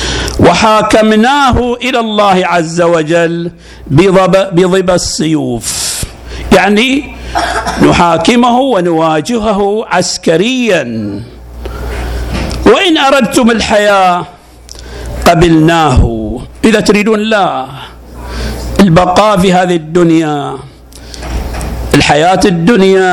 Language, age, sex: Arabic, 60-79, male